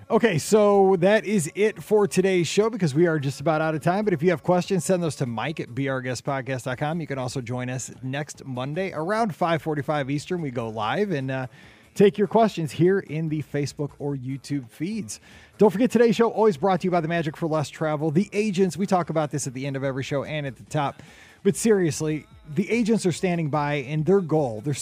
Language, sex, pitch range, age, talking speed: English, male, 140-185 Hz, 30-49, 220 wpm